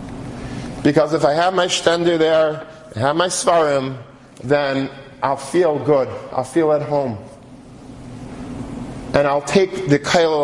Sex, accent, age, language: male, American, 40-59, English